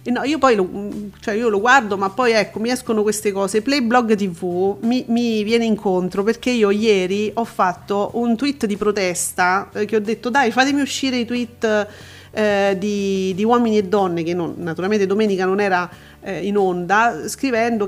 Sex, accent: female, native